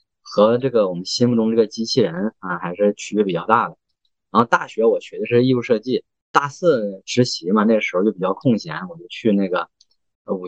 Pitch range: 100-120 Hz